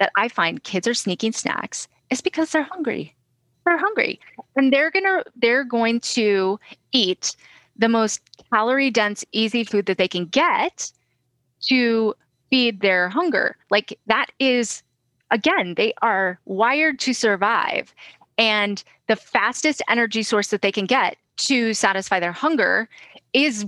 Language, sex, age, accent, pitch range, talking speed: English, female, 30-49, American, 200-270 Hz, 145 wpm